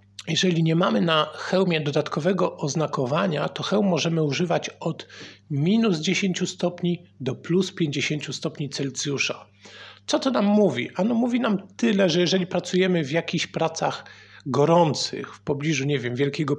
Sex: male